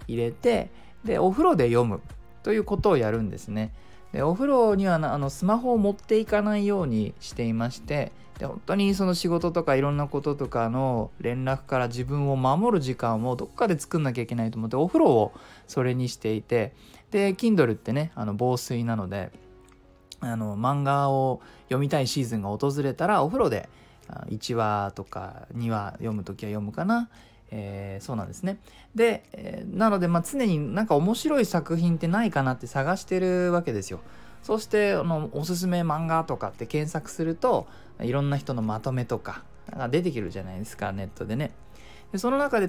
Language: Japanese